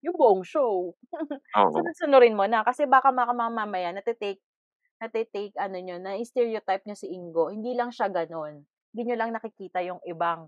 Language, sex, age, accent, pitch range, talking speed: Filipino, female, 20-39, native, 170-225 Hz, 155 wpm